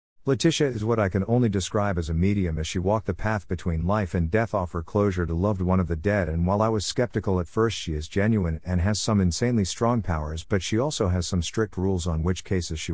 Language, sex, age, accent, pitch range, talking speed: English, male, 50-69, American, 90-110 Hz, 255 wpm